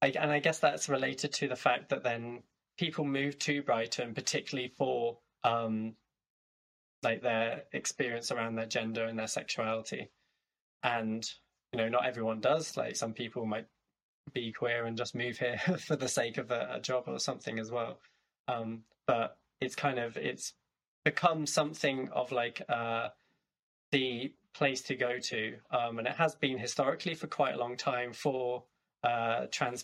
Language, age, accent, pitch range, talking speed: English, 20-39, British, 110-125 Hz, 165 wpm